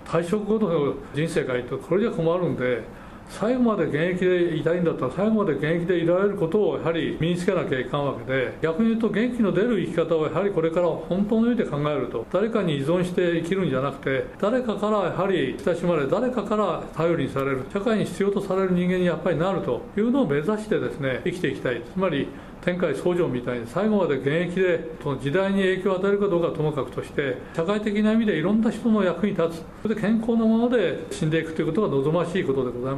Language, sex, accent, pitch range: Japanese, male, native, 150-205 Hz